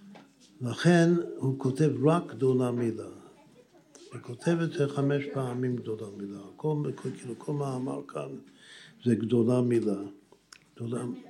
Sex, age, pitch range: male, 60-79, 125-170 Hz